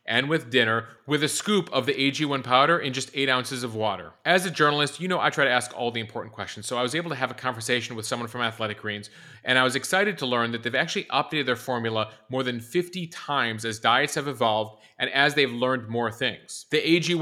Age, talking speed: 30-49, 245 wpm